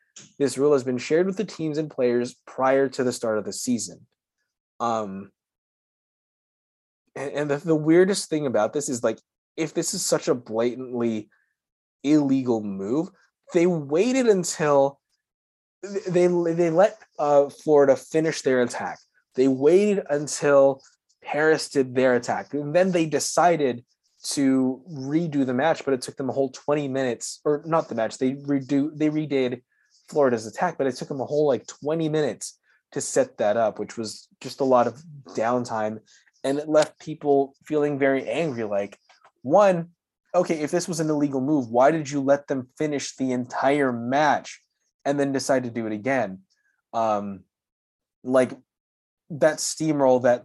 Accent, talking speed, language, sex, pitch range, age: American, 165 wpm, English, male, 125-155 Hz, 20-39